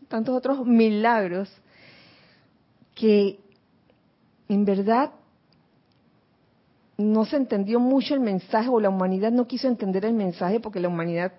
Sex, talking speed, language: female, 120 wpm, Spanish